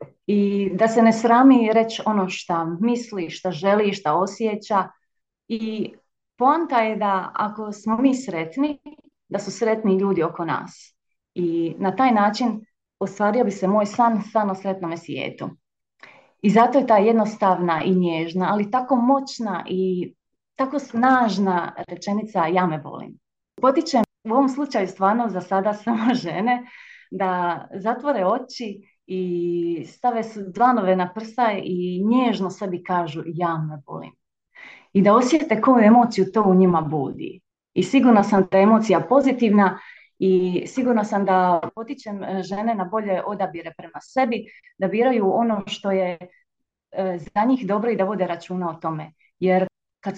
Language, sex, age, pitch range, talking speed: Croatian, female, 30-49, 185-230 Hz, 150 wpm